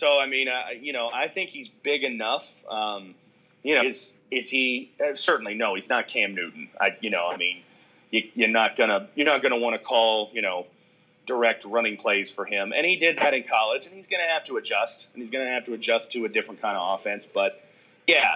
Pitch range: 105-145 Hz